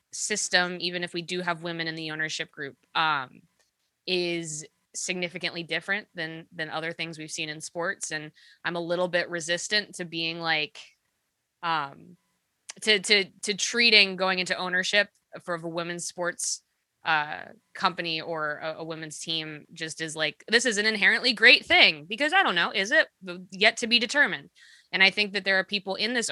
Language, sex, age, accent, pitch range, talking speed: English, female, 20-39, American, 160-190 Hz, 180 wpm